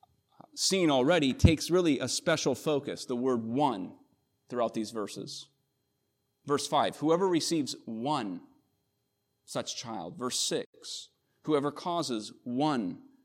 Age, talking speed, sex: 30-49, 115 wpm, male